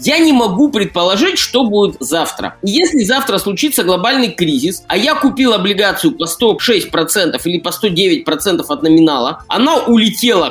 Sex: male